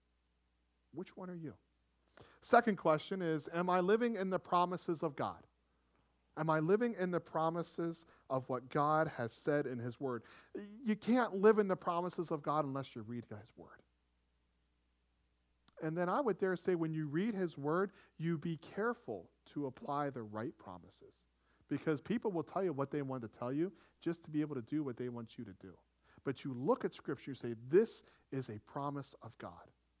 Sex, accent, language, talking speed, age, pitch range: male, American, English, 195 wpm, 40-59, 115-180 Hz